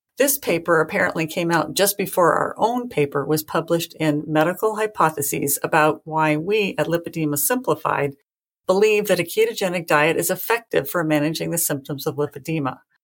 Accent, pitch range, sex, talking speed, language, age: American, 150-195 Hz, female, 155 wpm, English, 50-69